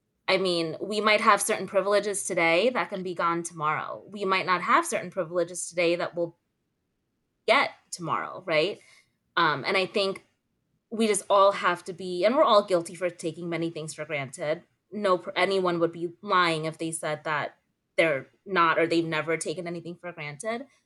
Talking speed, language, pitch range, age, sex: 180 wpm, English, 170-205 Hz, 20-39, female